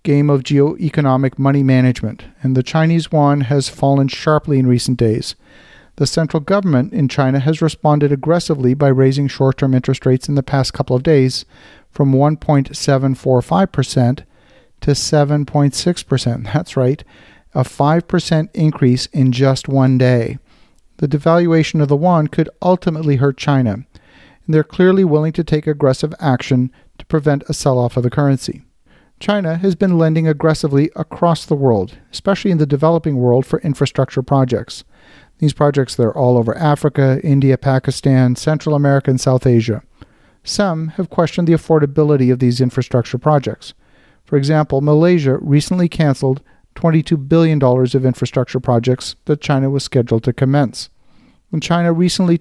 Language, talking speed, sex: English, 145 wpm, male